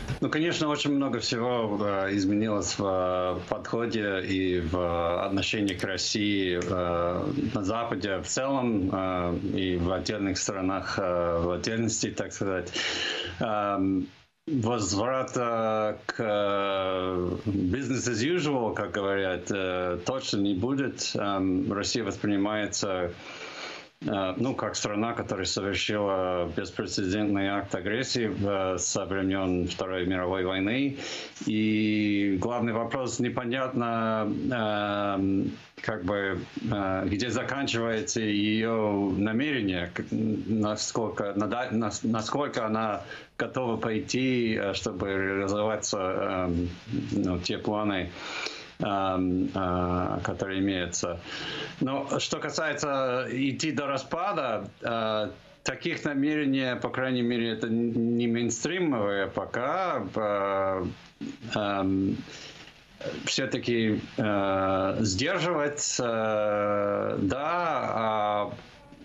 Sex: male